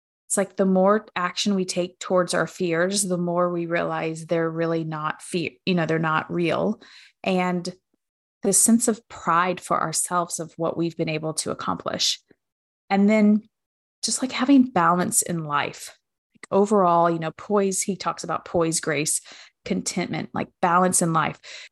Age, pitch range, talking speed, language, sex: 20-39, 170-200 Hz, 160 wpm, English, female